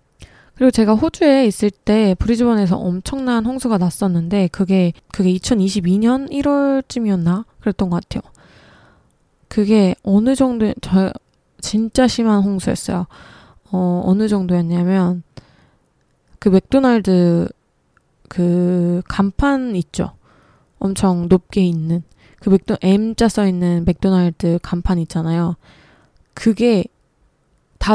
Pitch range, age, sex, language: 180-220 Hz, 20-39, female, Korean